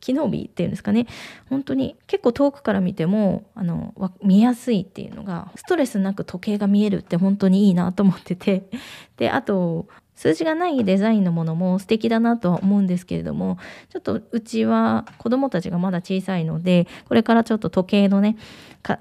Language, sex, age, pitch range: Japanese, female, 20-39, 175-225 Hz